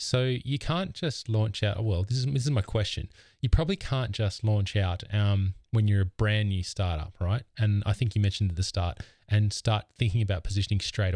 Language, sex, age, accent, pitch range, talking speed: English, male, 20-39, Australian, 95-115 Hz, 220 wpm